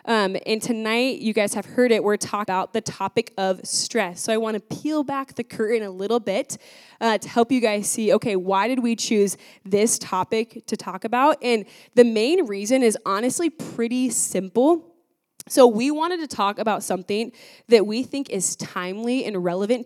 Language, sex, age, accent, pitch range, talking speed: English, female, 20-39, American, 200-260 Hz, 195 wpm